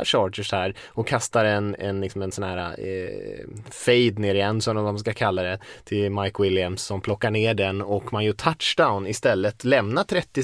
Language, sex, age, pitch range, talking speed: Swedish, male, 20-39, 95-120 Hz, 185 wpm